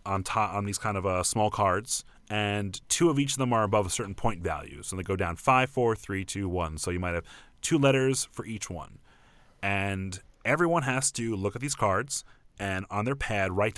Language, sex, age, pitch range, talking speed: English, male, 30-49, 100-130 Hz, 225 wpm